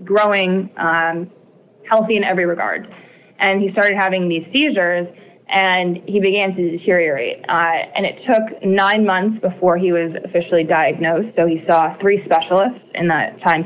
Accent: American